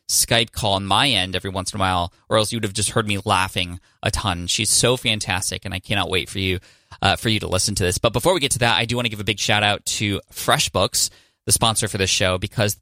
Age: 20-39